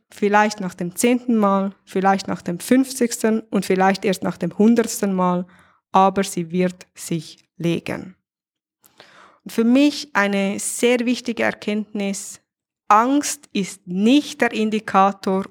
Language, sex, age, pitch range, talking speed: German, female, 20-39, 185-230 Hz, 130 wpm